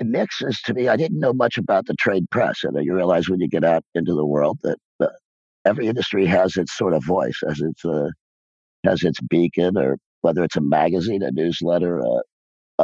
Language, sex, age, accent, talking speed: English, male, 50-69, American, 215 wpm